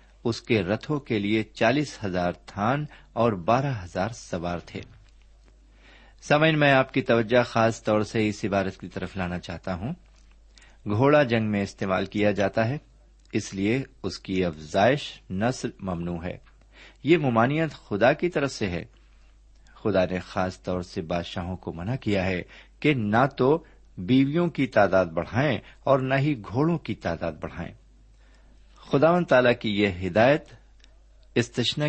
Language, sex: Urdu, male